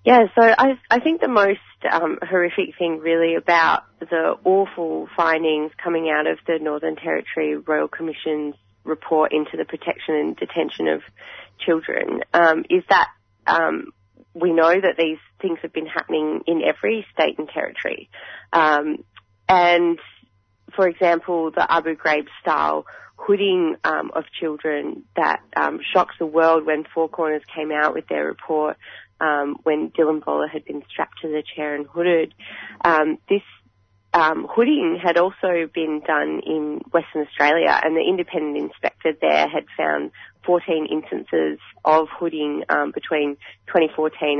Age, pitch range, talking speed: 20-39, 150-170 Hz, 145 wpm